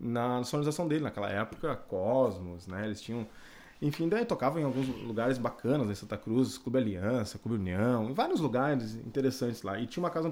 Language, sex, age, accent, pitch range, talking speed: Portuguese, male, 20-39, Brazilian, 110-155 Hz, 185 wpm